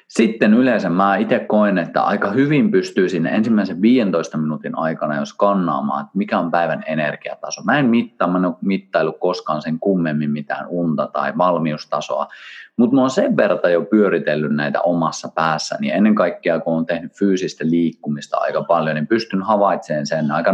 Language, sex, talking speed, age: Finnish, male, 165 wpm, 30-49